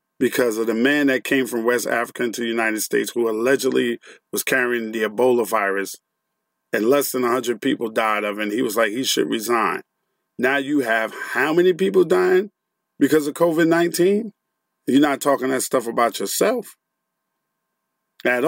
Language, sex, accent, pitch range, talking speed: English, male, American, 125-150 Hz, 175 wpm